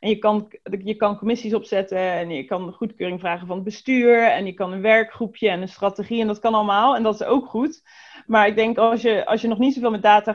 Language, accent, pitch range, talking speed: Dutch, Dutch, 195-225 Hz, 260 wpm